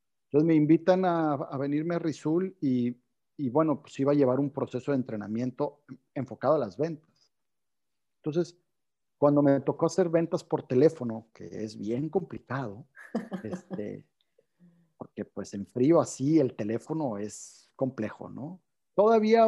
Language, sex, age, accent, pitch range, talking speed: Spanish, male, 40-59, Mexican, 125-165 Hz, 145 wpm